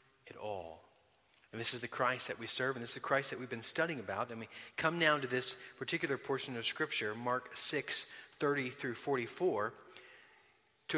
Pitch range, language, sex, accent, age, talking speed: 120-150 Hz, English, male, American, 30-49, 195 wpm